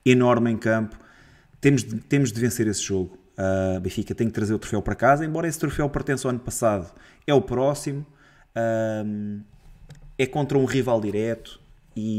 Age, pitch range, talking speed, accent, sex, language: 20-39, 105-125 Hz, 180 wpm, Portuguese, male, Portuguese